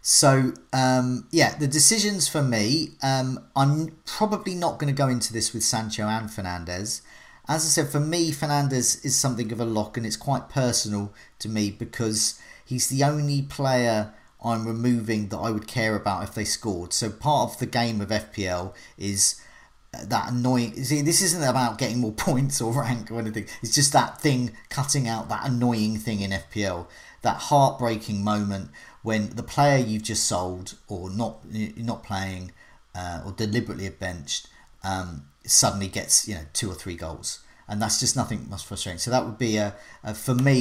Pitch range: 105-130 Hz